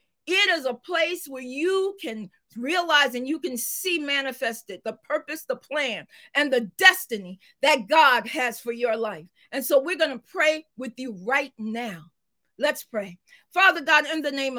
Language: English